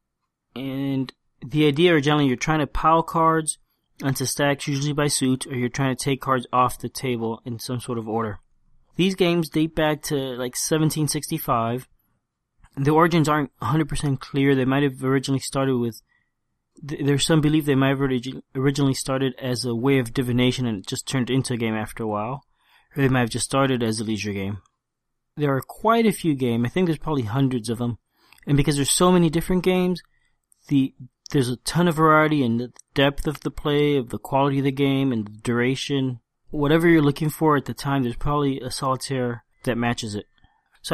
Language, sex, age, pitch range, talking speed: English, male, 20-39, 125-150 Hz, 200 wpm